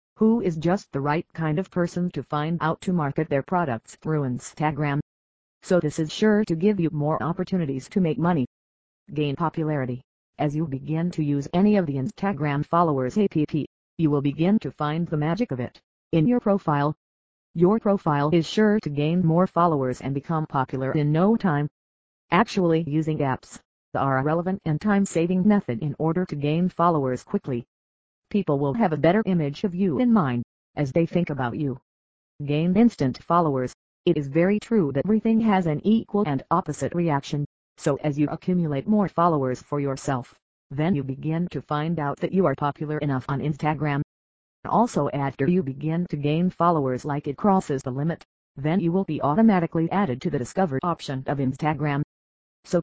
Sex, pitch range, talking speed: female, 140-180 Hz, 180 wpm